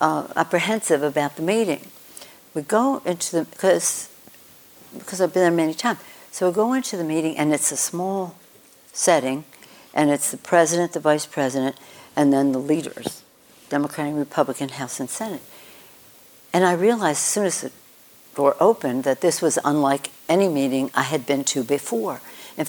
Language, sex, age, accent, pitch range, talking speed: English, female, 60-79, American, 140-170 Hz, 170 wpm